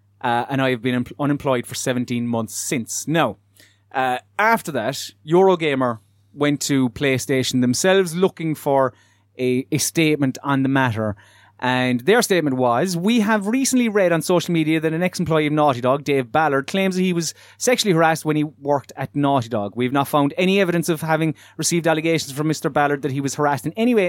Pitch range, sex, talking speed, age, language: 120-155 Hz, male, 195 wpm, 30-49, English